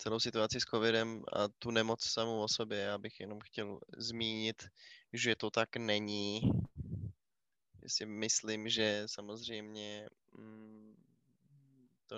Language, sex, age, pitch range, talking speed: Czech, male, 20-39, 110-120 Hz, 120 wpm